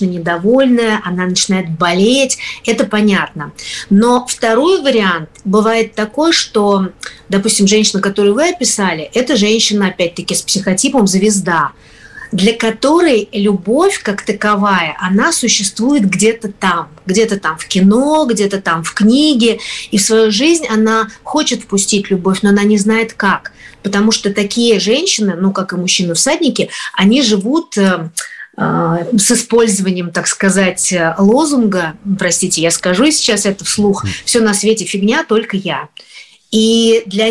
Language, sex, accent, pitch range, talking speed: Russian, female, native, 195-230 Hz, 130 wpm